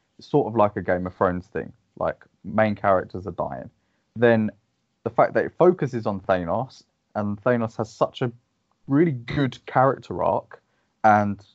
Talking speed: 160 wpm